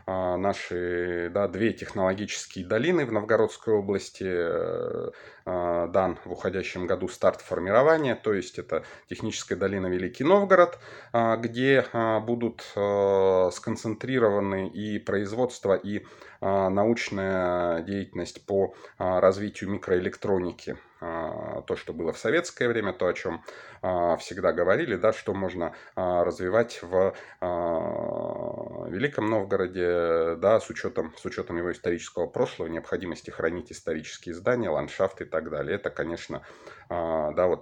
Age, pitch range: 30-49, 90-125 Hz